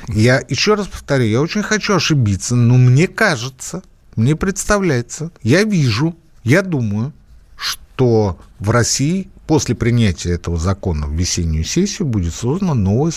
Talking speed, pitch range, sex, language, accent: 135 wpm, 105-145 Hz, male, Russian, native